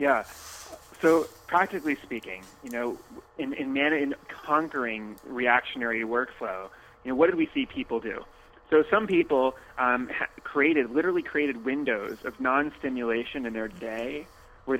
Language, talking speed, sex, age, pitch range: English, 140 wpm, male, 30-49, 120-150 Hz